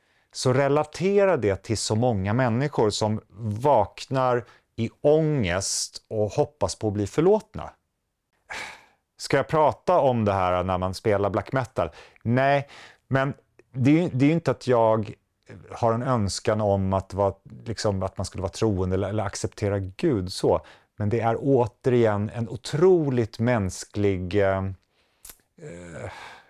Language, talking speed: Swedish, 140 wpm